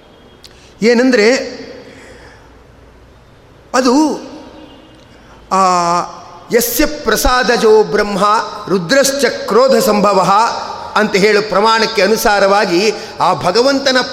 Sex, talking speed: male, 70 wpm